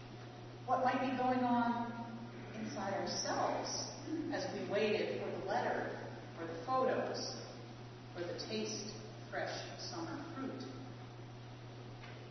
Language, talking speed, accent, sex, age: English, 110 wpm, American, female, 40-59